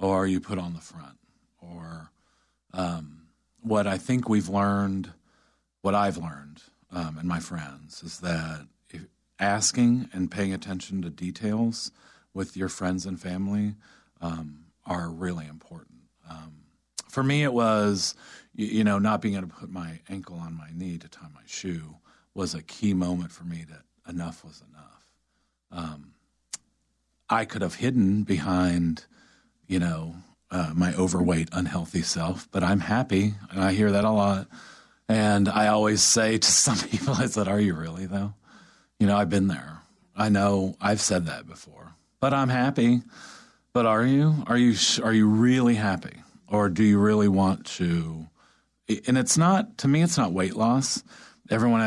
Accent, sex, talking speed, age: American, male, 170 wpm, 40-59